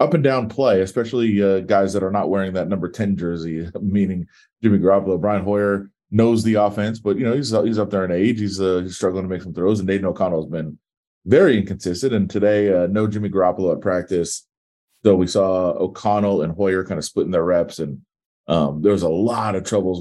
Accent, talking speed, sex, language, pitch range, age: American, 220 wpm, male, English, 95-110 Hz, 30-49